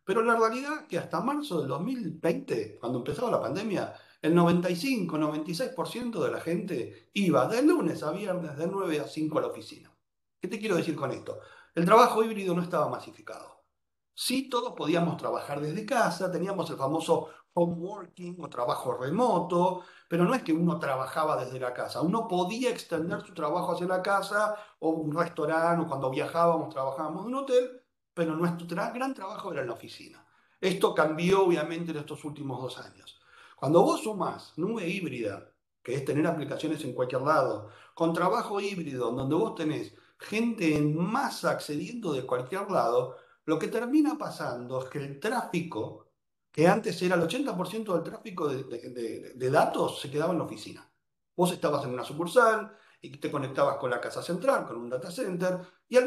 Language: Spanish